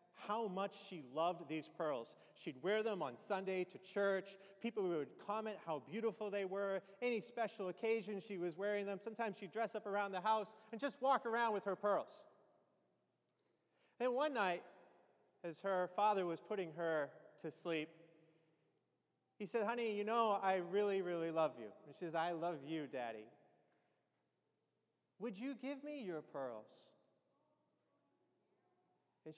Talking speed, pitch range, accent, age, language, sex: 155 wpm, 160-215 Hz, American, 30-49, English, male